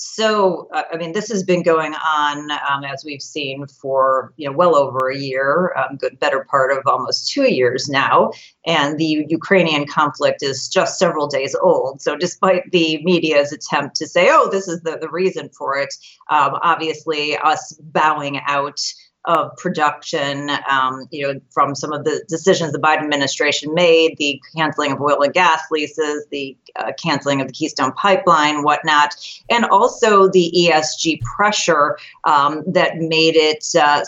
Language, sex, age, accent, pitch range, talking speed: English, female, 40-59, American, 145-165 Hz, 165 wpm